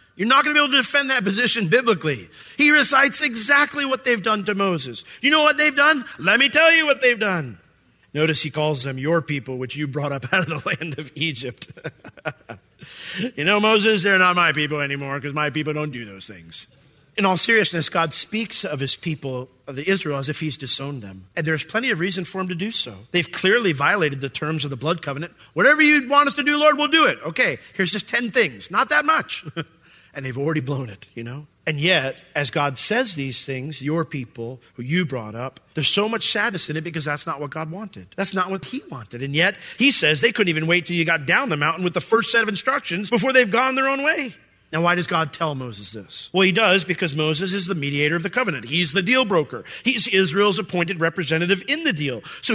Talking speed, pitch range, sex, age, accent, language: 235 wpm, 145-215 Hz, male, 40-59, American, English